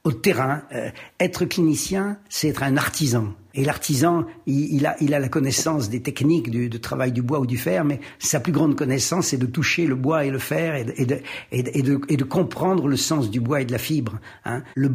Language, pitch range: French, 110-150 Hz